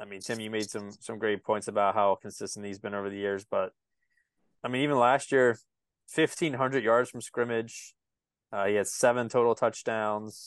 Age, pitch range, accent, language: 20-39, 100-125 Hz, American, English